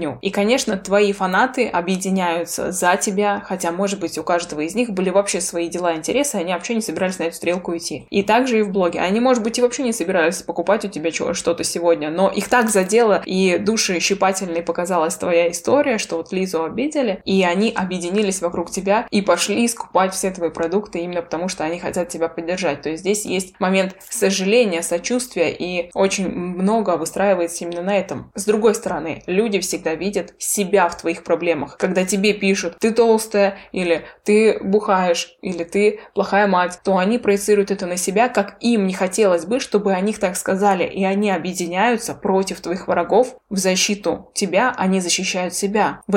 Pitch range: 175-205 Hz